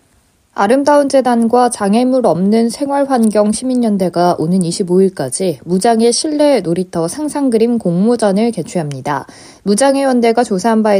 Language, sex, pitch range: Korean, female, 180-250 Hz